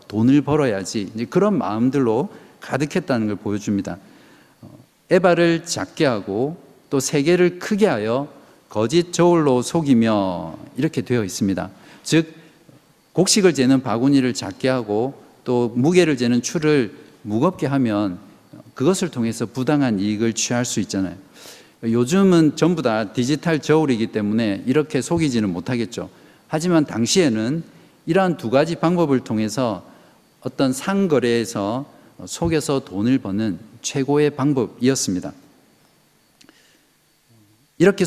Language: Korean